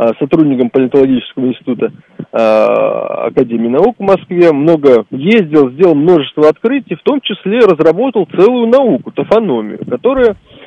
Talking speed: 110 wpm